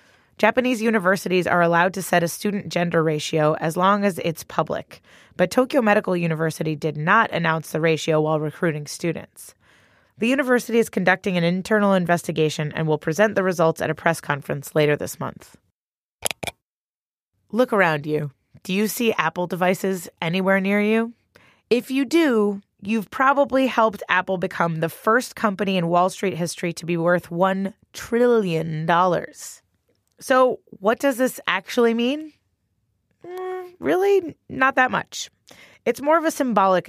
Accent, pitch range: American, 165-225 Hz